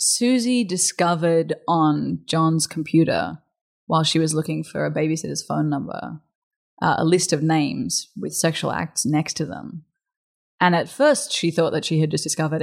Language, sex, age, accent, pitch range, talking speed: English, female, 20-39, Australian, 155-180 Hz, 165 wpm